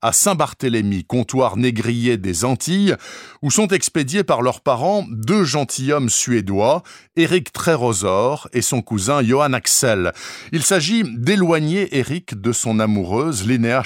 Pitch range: 110-155 Hz